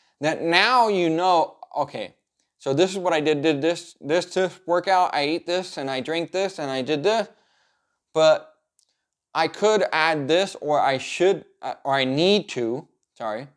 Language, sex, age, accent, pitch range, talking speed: English, male, 20-39, American, 135-180 Hz, 180 wpm